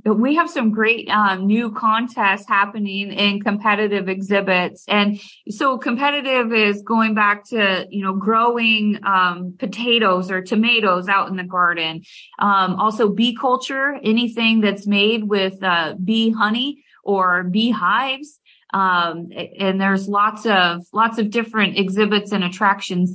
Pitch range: 190-230 Hz